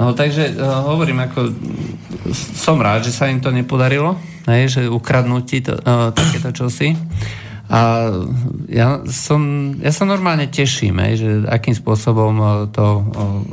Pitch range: 110-140 Hz